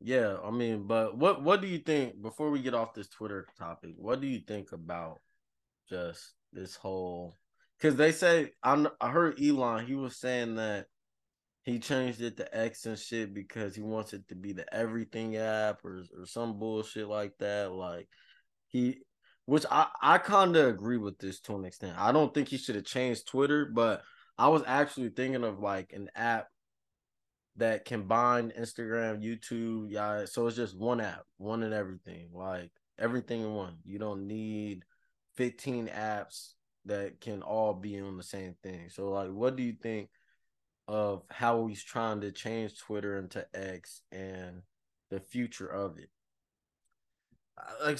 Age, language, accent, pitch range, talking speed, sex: 20-39, English, American, 100-125 Hz, 175 wpm, male